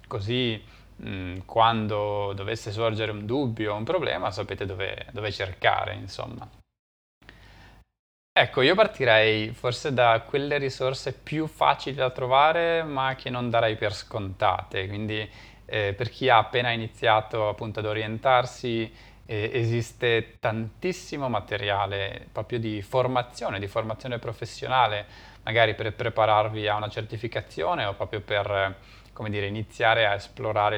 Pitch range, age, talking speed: 105-125 Hz, 20-39, 125 wpm